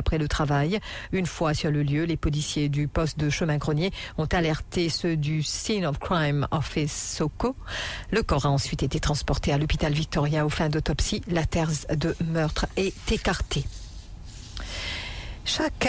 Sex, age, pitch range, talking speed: female, 50-69, 150-180 Hz, 160 wpm